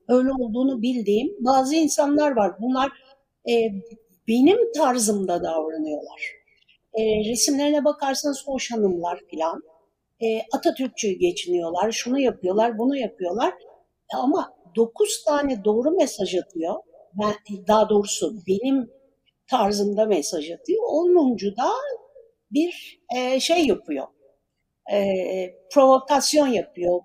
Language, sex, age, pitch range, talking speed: Turkish, female, 60-79, 210-295 Hz, 105 wpm